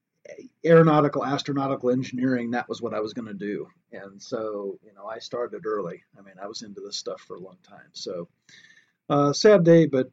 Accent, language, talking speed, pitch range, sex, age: American, English, 195 wpm, 130-175 Hz, male, 40-59